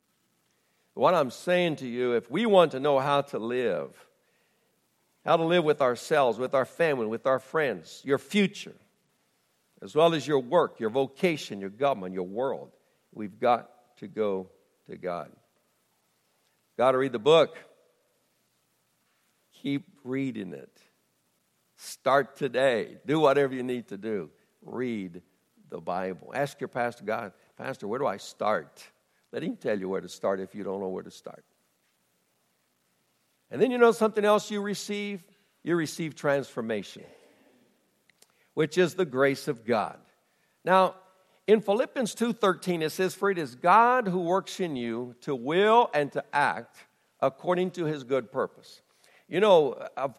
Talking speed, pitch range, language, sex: 155 wpm, 130-185 Hz, English, male